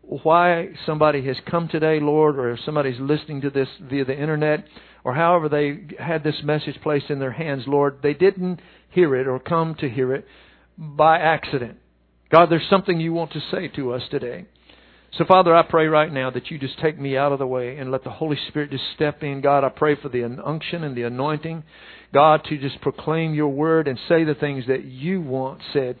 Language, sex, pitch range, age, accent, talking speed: English, male, 145-180 Hz, 50-69, American, 215 wpm